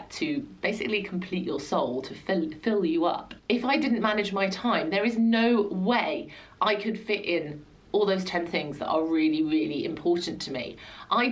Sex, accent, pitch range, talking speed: female, British, 165-225 Hz, 190 wpm